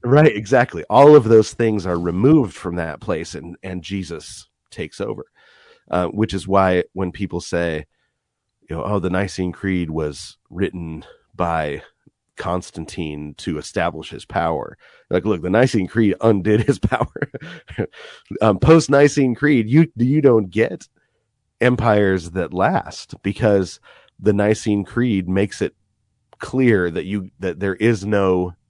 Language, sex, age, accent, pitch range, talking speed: English, male, 30-49, American, 90-115 Hz, 145 wpm